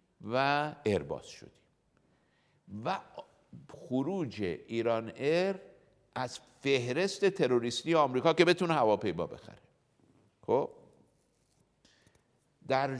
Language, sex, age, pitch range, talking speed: Persian, male, 60-79, 95-135 Hz, 85 wpm